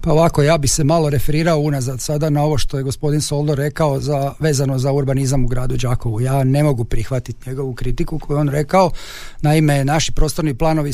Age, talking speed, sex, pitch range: 40-59, 195 wpm, male, 135-155 Hz